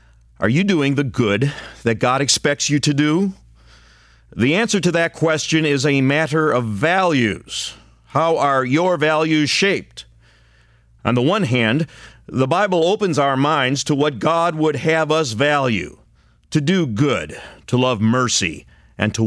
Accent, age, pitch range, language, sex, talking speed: American, 50-69, 110-155 Hz, English, male, 155 wpm